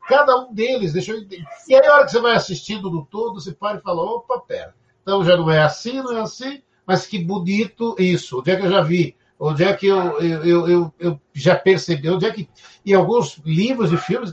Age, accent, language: 60-79, Brazilian, Portuguese